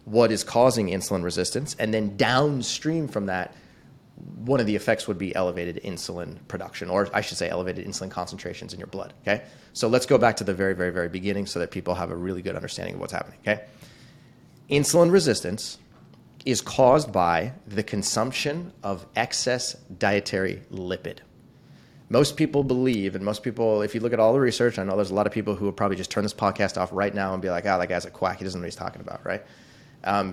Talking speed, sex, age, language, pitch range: 220 wpm, male, 30-49, English, 95-120 Hz